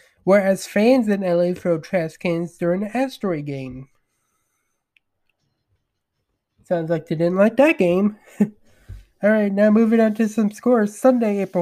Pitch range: 175-230 Hz